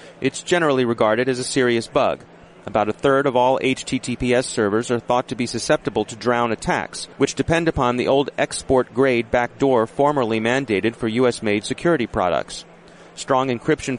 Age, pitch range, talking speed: 30-49, 115-140 Hz, 160 wpm